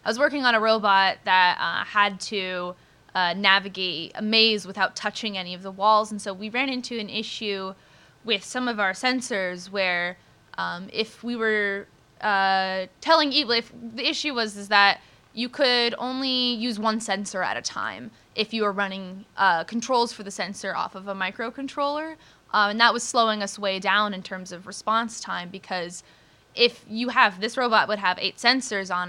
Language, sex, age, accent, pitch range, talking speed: English, female, 10-29, American, 190-230 Hz, 190 wpm